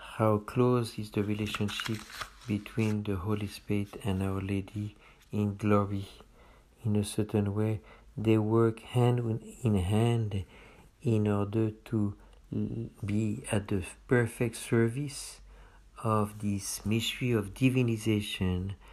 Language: English